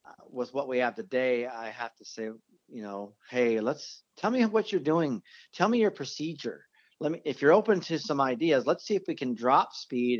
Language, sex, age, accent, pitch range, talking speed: English, male, 40-59, American, 125-165 Hz, 220 wpm